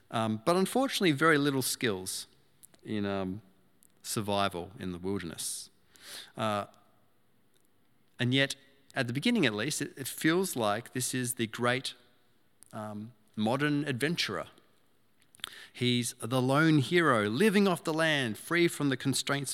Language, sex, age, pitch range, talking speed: English, male, 30-49, 105-130 Hz, 130 wpm